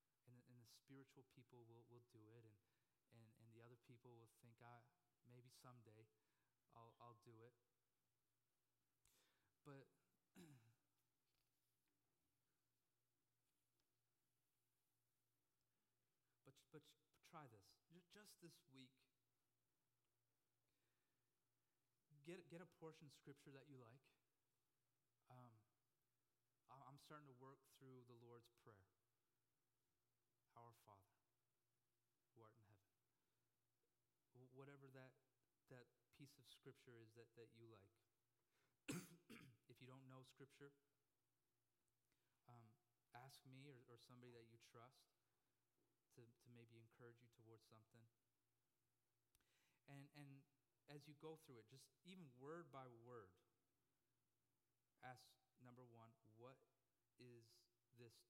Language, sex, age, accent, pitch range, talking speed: English, male, 30-49, American, 115-135 Hz, 110 wpm